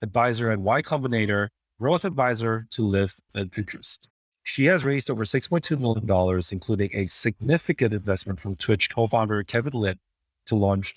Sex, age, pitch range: male, 30-49, 95-120 Hz